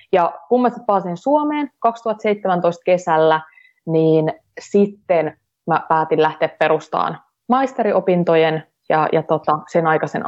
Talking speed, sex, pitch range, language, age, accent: 110 wpm, female, 160-215 Hz, Finnish, 20-39, native